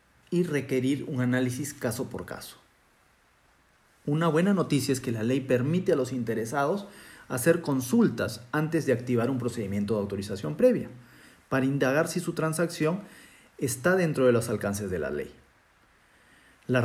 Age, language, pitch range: 40-59, Spanish, 120-160 Hz